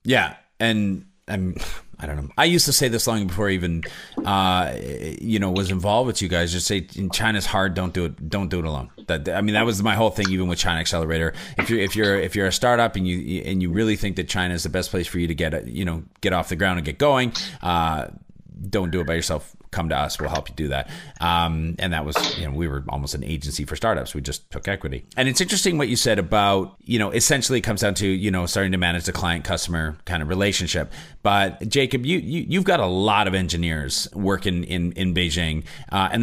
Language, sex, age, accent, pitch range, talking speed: English, male, 30-49, American, 85-110 Hz, 250 wpm